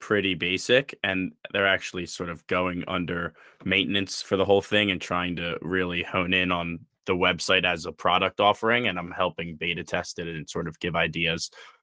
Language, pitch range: English, 85-100 Hz